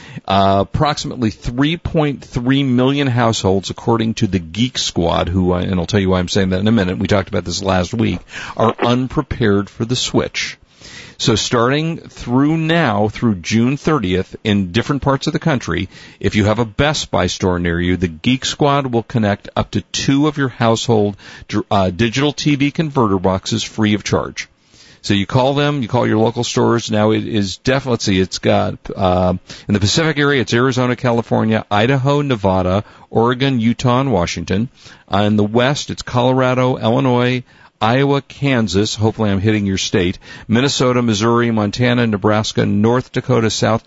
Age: 50-69